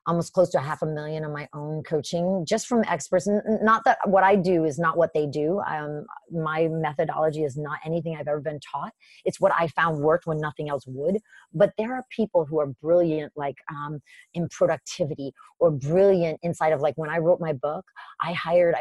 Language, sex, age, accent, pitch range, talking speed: English, female, 30-49, American, 150-185 Hz, 210 wpm